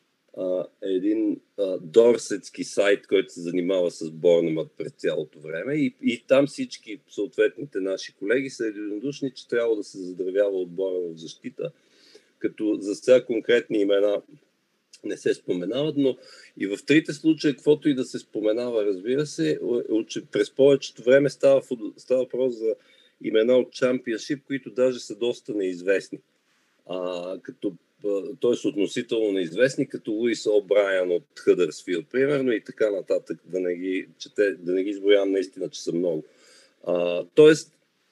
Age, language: 40-59, Bulgarian